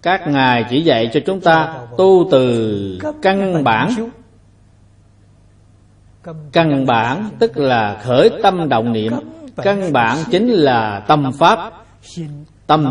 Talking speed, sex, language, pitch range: 120 wpm, male, Vietnamese, 105-160 Hz